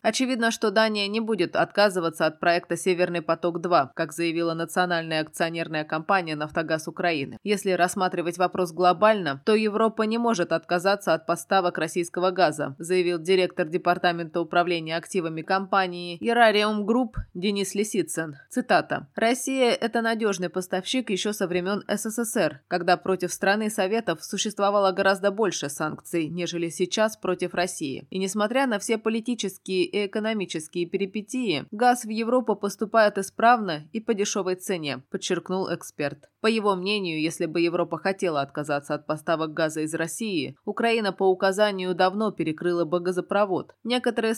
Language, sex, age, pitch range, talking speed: Russian, female, 20-39, 170-210 Hz, 135 wpm